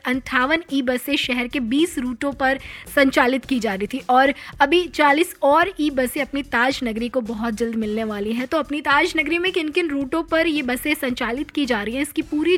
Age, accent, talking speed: 20-39, native, 105 wpm